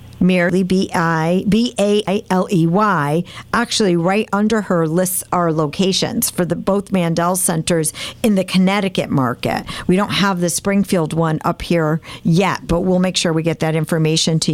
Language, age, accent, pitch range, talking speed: English, 50-69, American, 160-190 Hz, 170 wpm